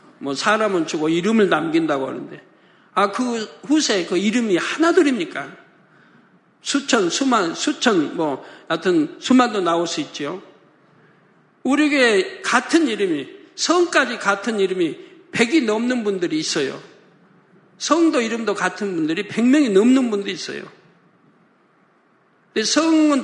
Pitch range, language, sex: 210-295 Hz, Korean, male